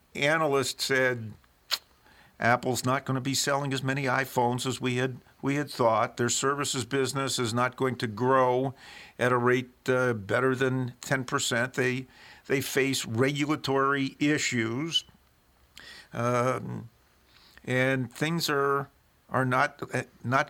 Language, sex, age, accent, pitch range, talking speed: English, male, 50-69, American, 120-135 Hz, 130 wpm